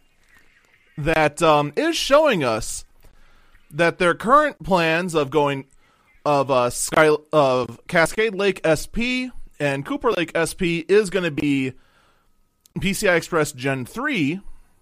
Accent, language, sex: American, English, male